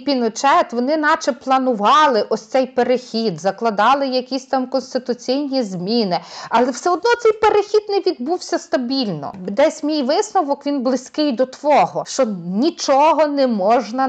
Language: Ukrainian